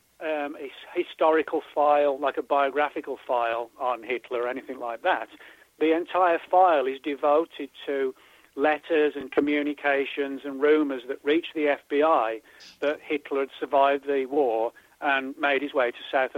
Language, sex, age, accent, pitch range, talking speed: English, male, 40-59, British, 135-160 Hz, 150 wpm